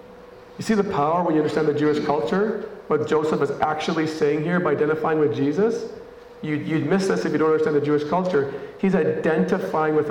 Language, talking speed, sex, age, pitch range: English, 200 wpm, male, 40-59, 145-185 Hz